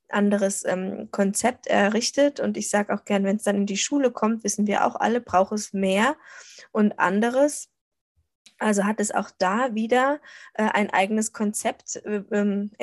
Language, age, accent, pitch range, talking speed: German, 20-39, German, 195-230 Hz, 170 wpm